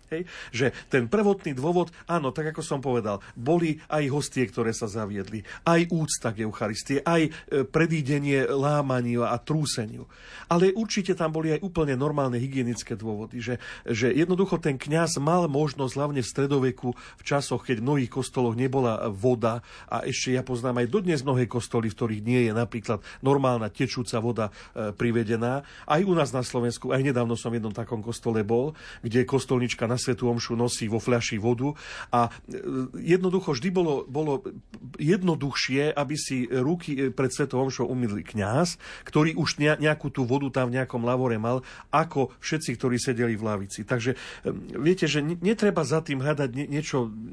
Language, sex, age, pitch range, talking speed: Slovak, male, 40-59, 120-150 Hz, 160 wpm